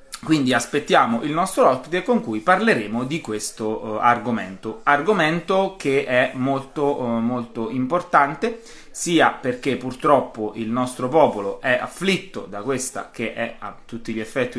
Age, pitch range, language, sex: 20-39, 110-150 Hz, Italian, male